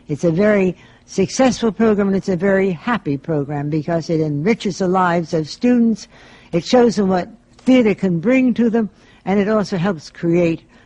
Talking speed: 175 wpm